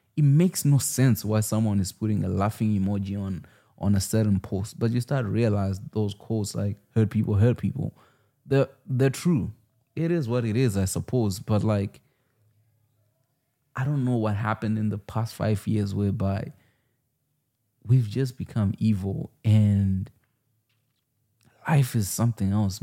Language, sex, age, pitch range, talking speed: English, male, 20-39, 100-120 Hz, 160 wpm